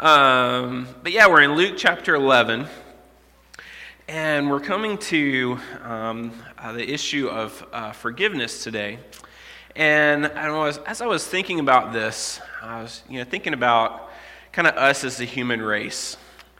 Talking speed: 150 wpm